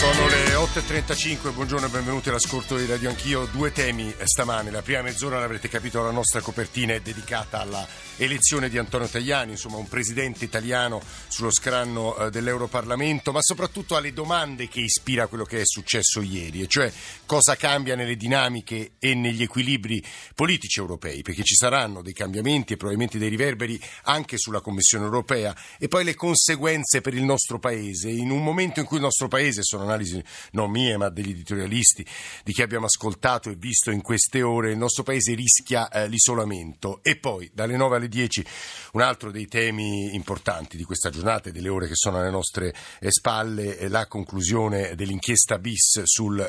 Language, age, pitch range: Italian, 50-69, 105-125 Hz